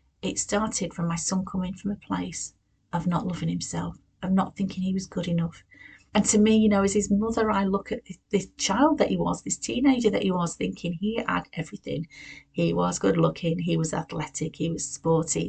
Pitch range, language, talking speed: 165-205 Hz, English, 215 wpm